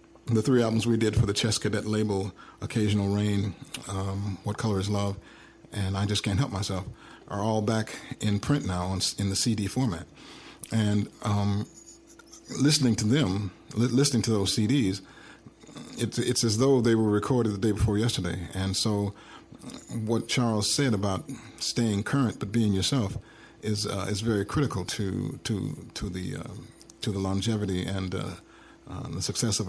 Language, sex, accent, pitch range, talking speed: English, male, American, 100-115 Hz, 170 wpm